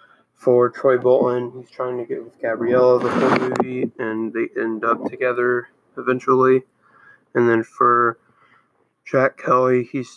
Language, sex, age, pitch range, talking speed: English, male, 20-39, 120-130 Hz, 140 wpm